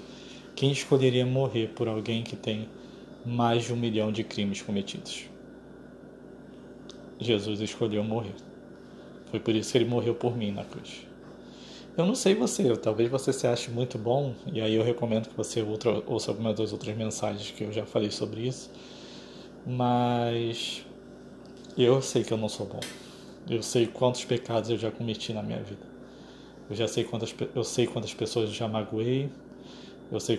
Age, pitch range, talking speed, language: 20-39, 110-130 Hz, 170 wpm, Portuguese